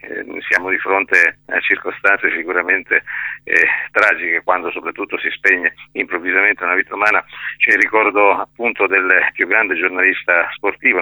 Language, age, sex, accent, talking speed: Italian, 50-69, male, native, 135 wpm